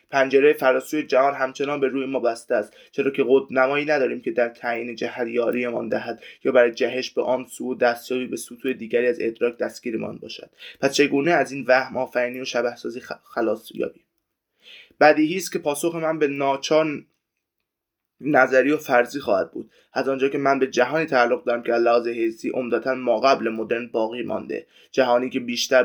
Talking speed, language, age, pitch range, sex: 175 wpm, Persian, 20-39, 120-140 Hz, male